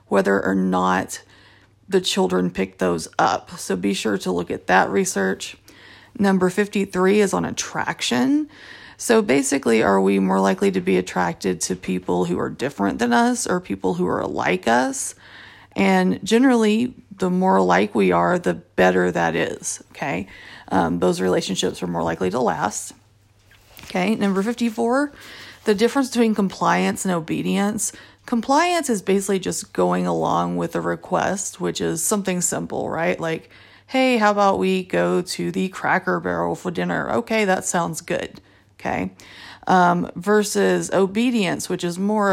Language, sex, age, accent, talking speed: English, female, 30-49, American, 155 wpm